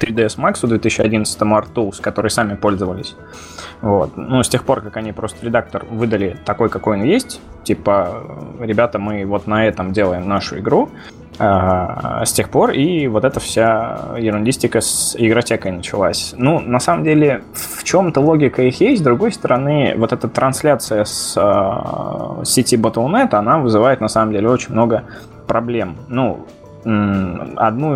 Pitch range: 105-125 Hz